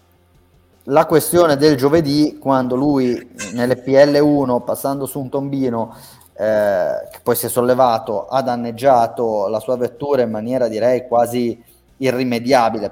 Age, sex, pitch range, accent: 20-39, male, 115-135 Hz, native